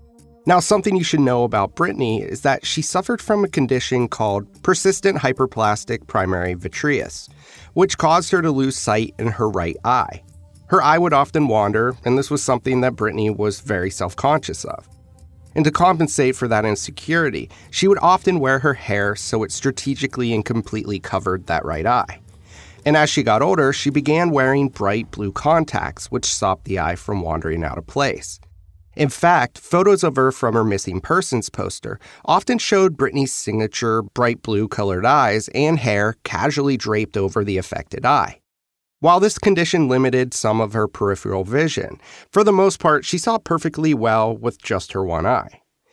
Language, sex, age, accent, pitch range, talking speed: English, male, 30-49, American, 100-155 Hz, 175 wpm